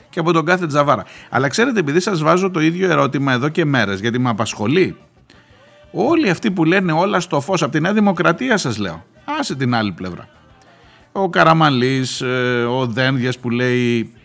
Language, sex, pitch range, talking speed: Greek, male, 115-175 Hz, 175 wpm